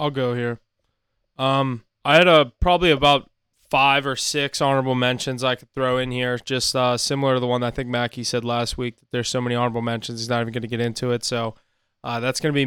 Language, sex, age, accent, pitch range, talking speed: English, male, 20-39, American, 120-130 Hz, 230 wpm